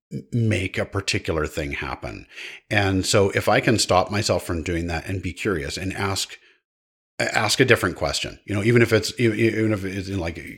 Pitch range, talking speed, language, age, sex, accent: 90-110 Hz, 185 wpm, English, 50-69, male, American